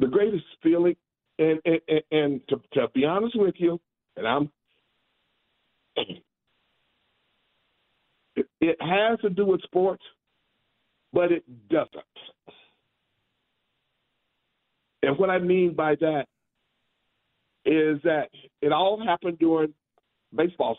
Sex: male